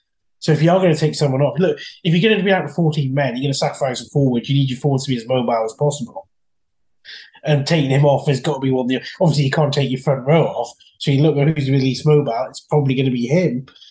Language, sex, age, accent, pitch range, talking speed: English, male, 20-39, British, 130-155 Hz, 290 wpm